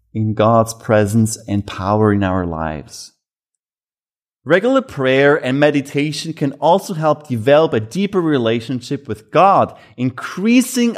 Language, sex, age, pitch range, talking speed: English, male, 30-49, 120-170 Hz, 120 wpm